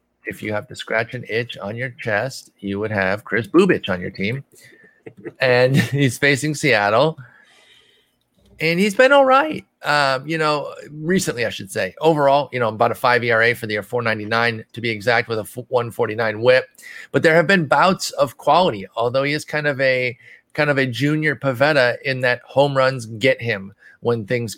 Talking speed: 190 wpm